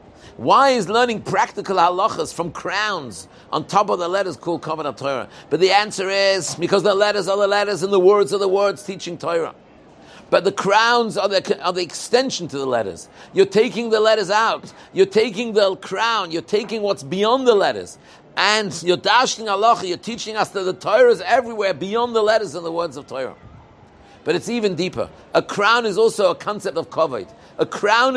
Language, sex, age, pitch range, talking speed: English, male, 50-69, 180-220 Hz, 200 wpm